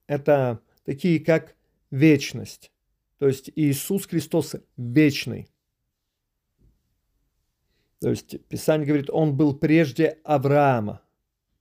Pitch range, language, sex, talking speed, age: 125-150 Hz, Russian, male, 90 wpm, 40-59